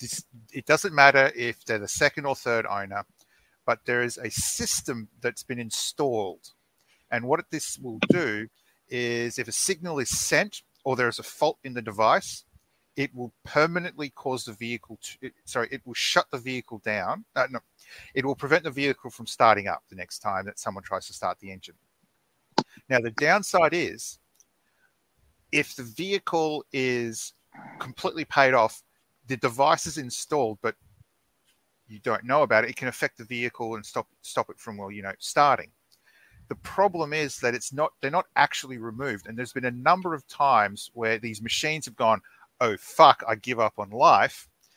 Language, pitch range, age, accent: English, 115-145 Hz, 40-59, Australian